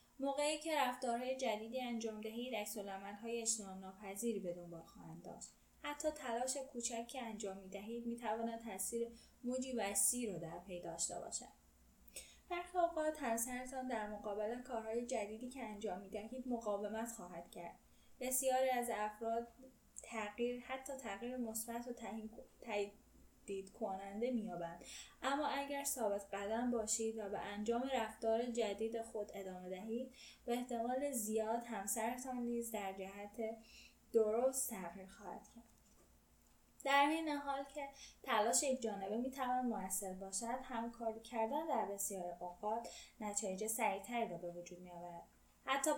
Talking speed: 135 wpm